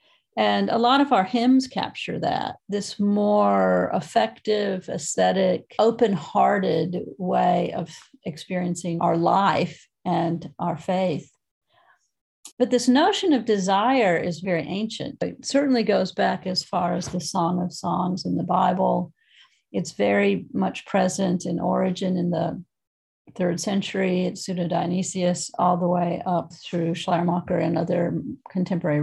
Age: 50-69